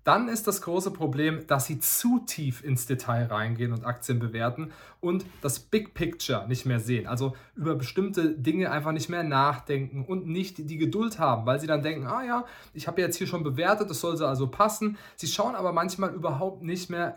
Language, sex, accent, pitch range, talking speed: German, male, German, 125-165 Hz, 205 wpm